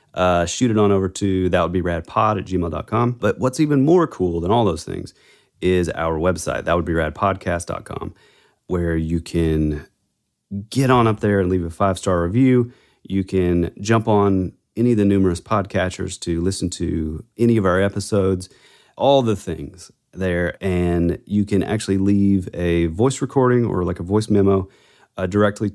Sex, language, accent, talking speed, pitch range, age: male, English, American, 175 wpm, 85-110 Hz, 30-49